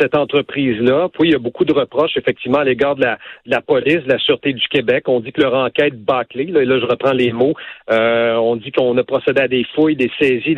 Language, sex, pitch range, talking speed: French, male, 130-195 Hz, 255 wpm